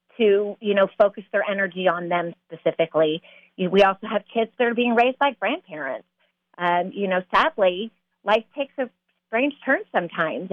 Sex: female